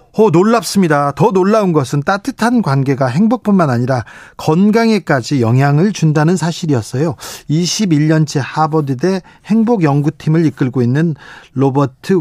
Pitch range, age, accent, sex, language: 135-185 Hz, 40-59, native, male, Korean